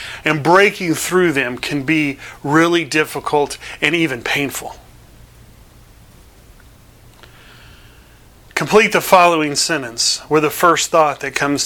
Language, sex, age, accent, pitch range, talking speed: English, male, 30-49, American, 145-180 Hz, 110 wpm